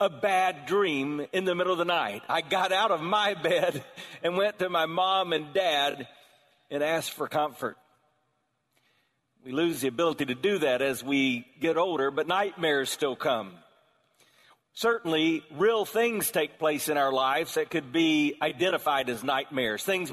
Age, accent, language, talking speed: 40-59, American, English, 165 wpm